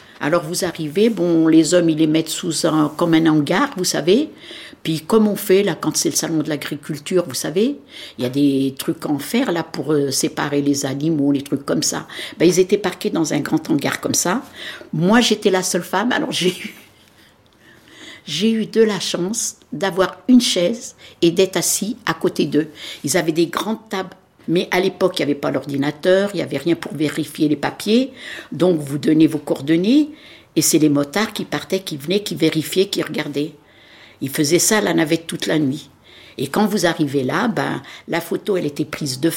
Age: 60-79